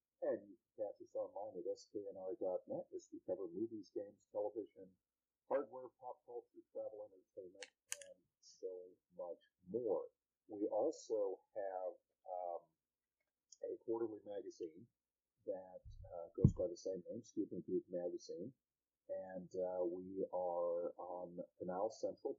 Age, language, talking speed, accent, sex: 50-69, English, 125 wpm, American, male